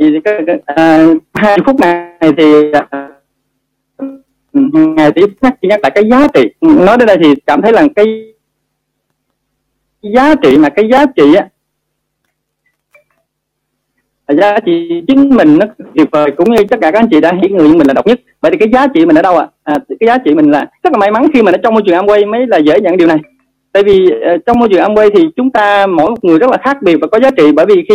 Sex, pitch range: male, 165-275 Hz